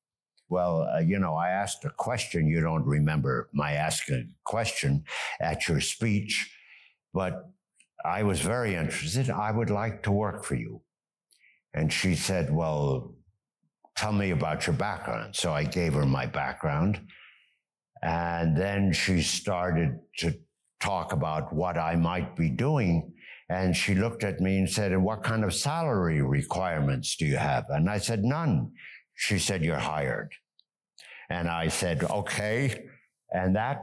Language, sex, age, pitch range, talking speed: English, male, 60-79, 80-105 Hz, 155 wpm